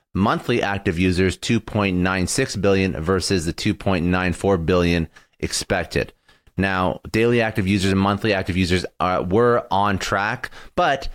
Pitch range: 90-115 Hz